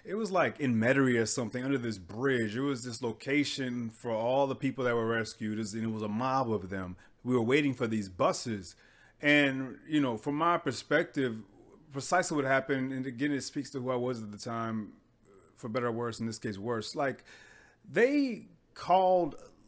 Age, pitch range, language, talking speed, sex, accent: 30-49, 120-195 Hz, English, 200 wpm, male, American